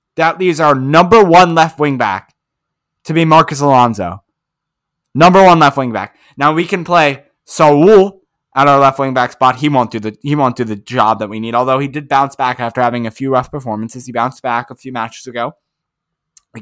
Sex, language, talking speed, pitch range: male, English, 200 wpm, 120-155 Hz